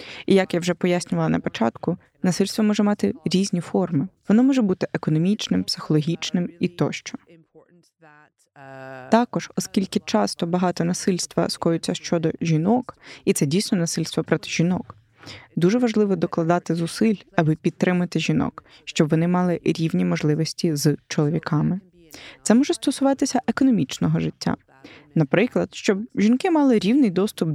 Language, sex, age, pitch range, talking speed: Ukrainian, female, 20-39, 165-230 Hz, 125 wpm